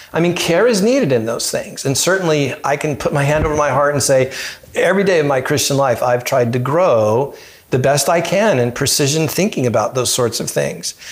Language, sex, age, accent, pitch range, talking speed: English, male, 50-69, American, 120-155 Hz, 225 wpm